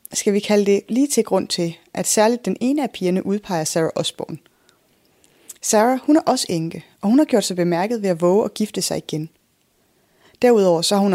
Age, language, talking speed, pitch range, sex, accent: 20-39, Danish, 210 wpm, 170-225 Hz, female, native